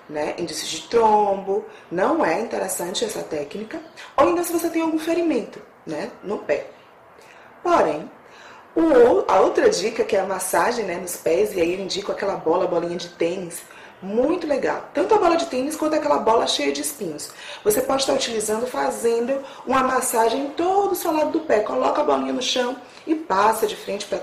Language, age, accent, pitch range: Portuguese, 20-39, Brazilian, 210-340 Hz